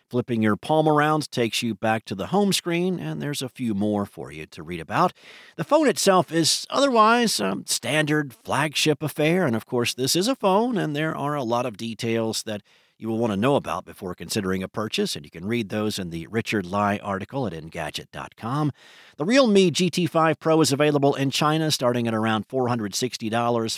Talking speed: 200 wpm